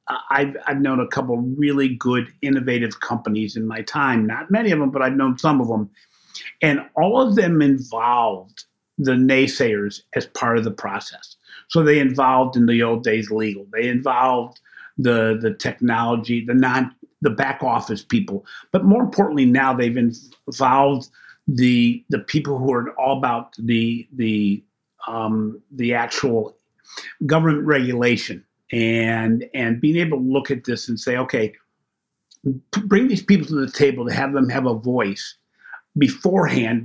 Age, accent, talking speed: 50-69, American, 160 wpm